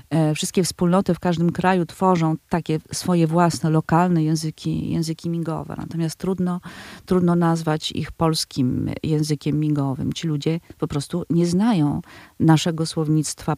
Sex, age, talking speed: female, 40-59, 130 wpm